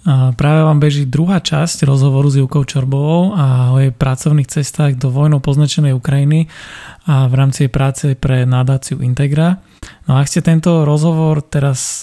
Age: 20-39